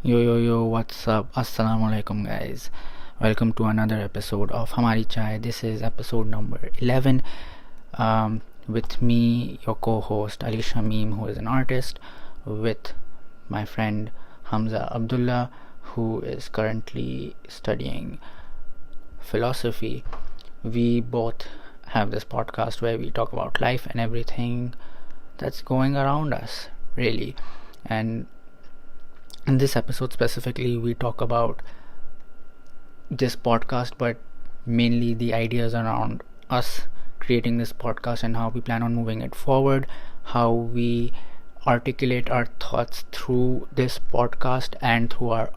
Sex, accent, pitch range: male, Indian, 110-125 Hz